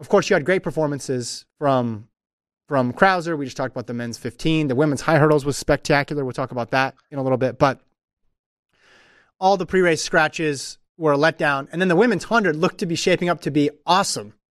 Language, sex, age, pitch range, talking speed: English, male, 30-49, 145-180 Hz, 210 wpm